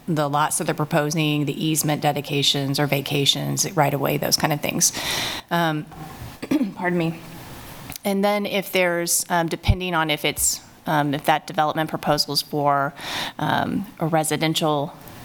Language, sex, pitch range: English, female, 145-165 Hz